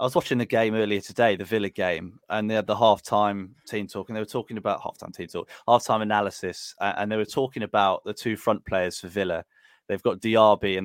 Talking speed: 230 wpm